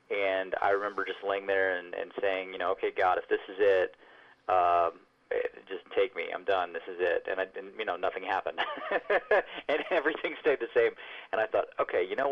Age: 30-49